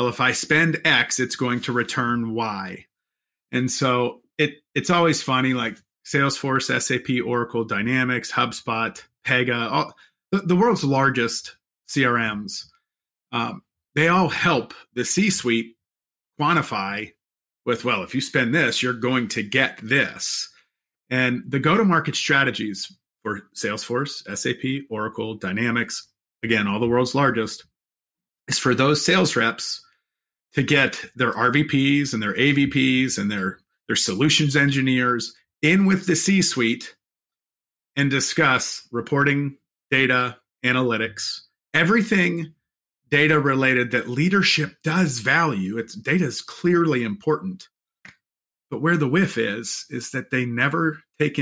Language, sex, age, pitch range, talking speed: English, male, 30-49, 120-155 Hz, 125 wpm